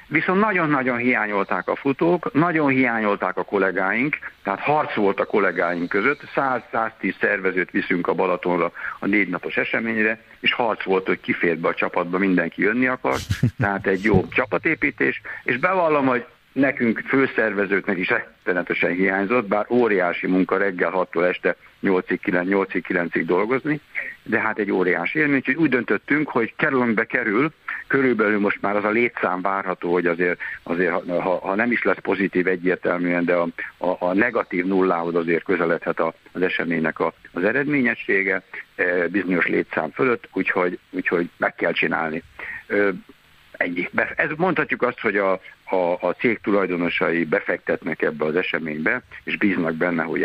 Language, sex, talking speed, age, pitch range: Hungarian, male, 145 wpm, 60-79, 90-125 Hz